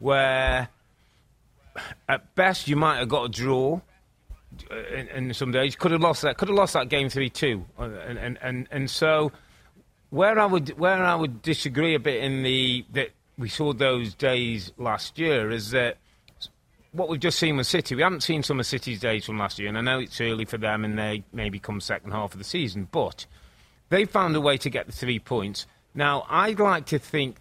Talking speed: 210 wpm